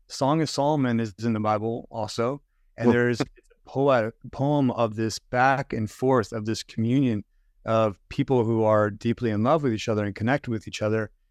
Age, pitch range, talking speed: 30-49, 110-125 Hz, 185 wpm